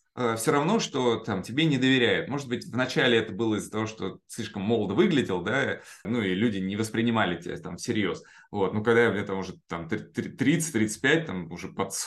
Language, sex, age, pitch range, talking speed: Russian, male, 20-39, 110-150 Hz, 190 wpm